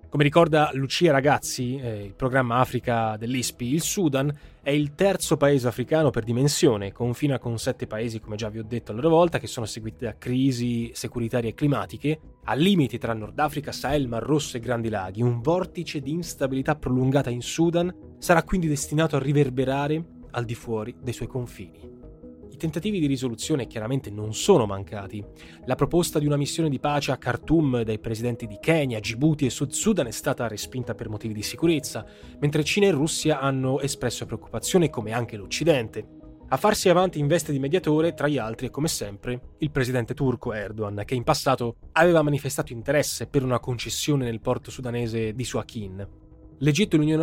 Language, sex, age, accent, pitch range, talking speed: Italian, male, 20-39, native, 115-150 Hz, 180 wpm